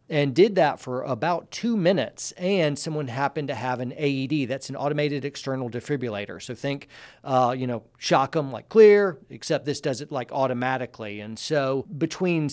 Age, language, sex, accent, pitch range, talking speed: 40-59, English, male, American, 130-155 Hz, 175 wpm